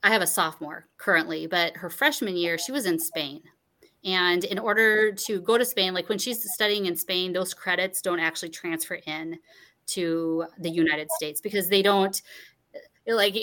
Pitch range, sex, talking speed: 170-220 Hz, female, 180 wpm